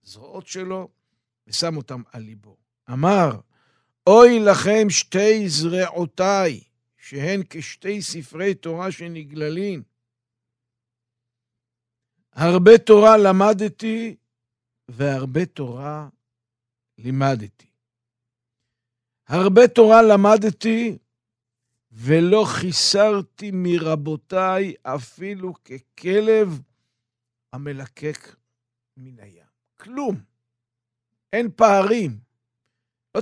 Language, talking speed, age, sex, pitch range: Hebrew, 65 wpm, 60-79, male, 120-195 Hz